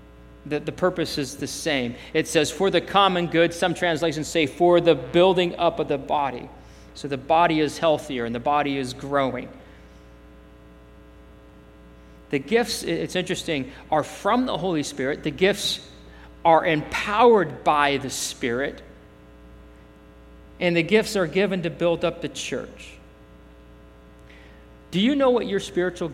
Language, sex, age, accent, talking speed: English, male, 40-59, American, 145 wpm